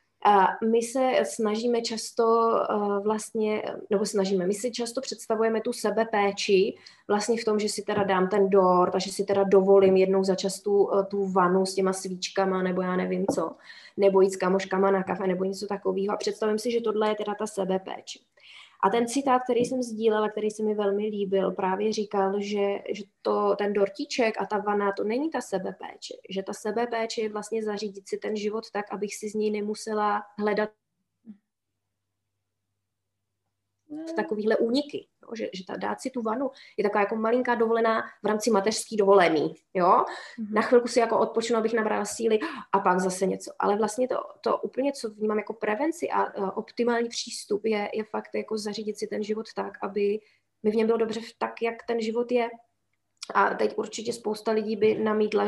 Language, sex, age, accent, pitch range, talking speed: Czech, female, 20-39, native, 200-225 Hz, 185 wpm